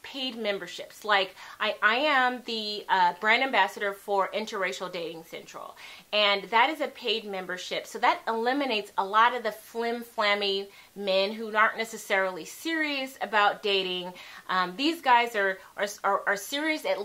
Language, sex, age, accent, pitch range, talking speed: English, female, 30-49, American, 205-280 Hz, 160 wpm